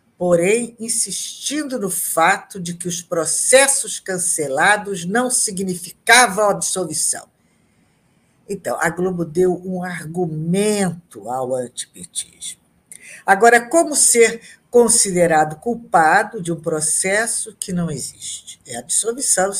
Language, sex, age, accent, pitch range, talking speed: Portuguese, female, 60-79, Brazilian, 155-200 Hz, 100 wpm